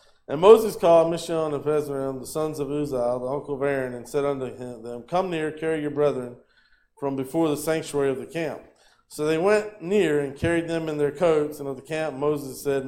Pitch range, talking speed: 135-165 Hz, 215 wpm